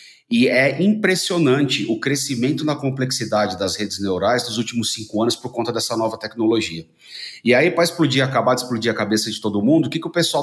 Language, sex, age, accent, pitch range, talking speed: Portuguese, male, 40-59, Brazilian, 110-140 Hz, 200 wpm